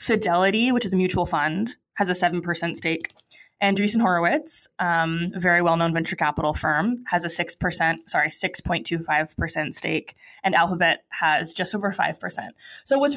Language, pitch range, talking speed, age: English, 170-215 Hz, 175 wpm, 20-39